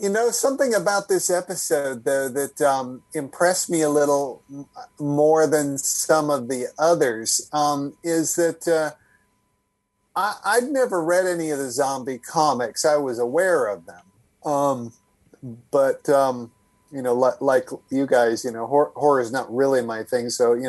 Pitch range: 120-155 Hz